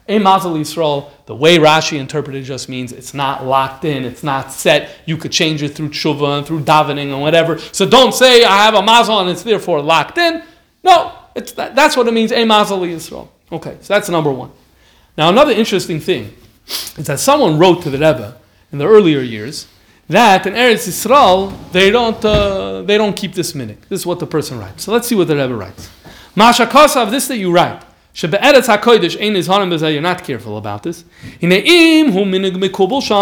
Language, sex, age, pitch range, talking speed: English, male, 40-59, 155-230 Hz, 190 wpm